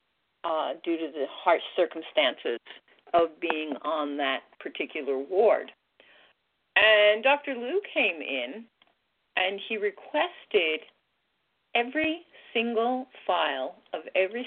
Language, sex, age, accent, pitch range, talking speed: English, female, 40-59, American, 195-275 Hz, 105 wpm